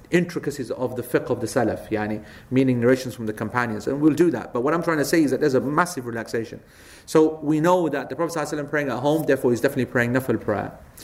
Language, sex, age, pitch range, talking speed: English, male, 40-59, 125-155 Hz, 245 wpm